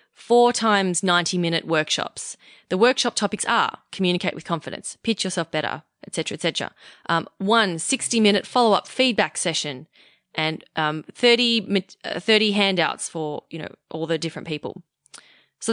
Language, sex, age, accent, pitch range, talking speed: English, female, 20-39, Australian, 170-210 Hz, 145 wpm